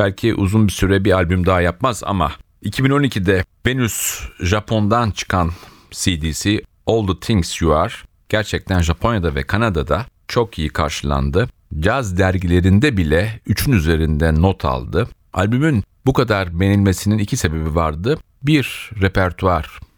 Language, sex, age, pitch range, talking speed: Turkish, male, 40-59, 85-105 Hz, 125 wpm